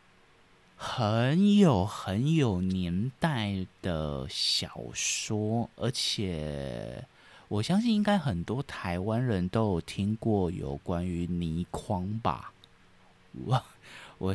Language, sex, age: Chinese, male, 20-39